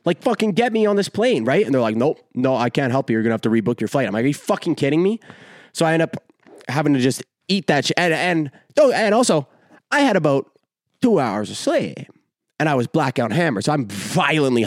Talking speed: 250 wpm